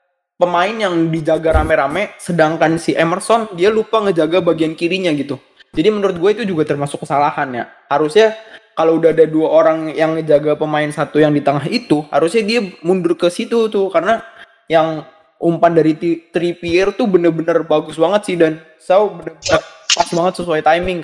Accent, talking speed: native, 165 wpm